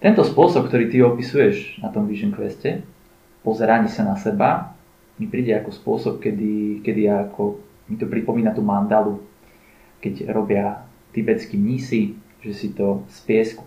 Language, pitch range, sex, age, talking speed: Slovak, 110-140 Hz, male, 20-39, 150 wpm